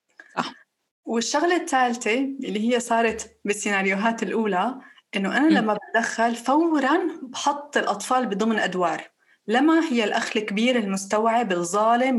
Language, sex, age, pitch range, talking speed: Arabic, female, 20-39, 205-275 Hz, 110 wpm